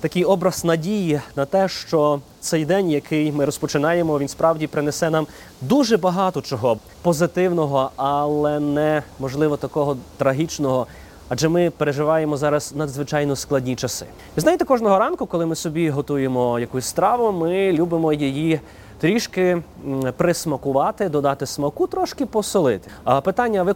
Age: 30-49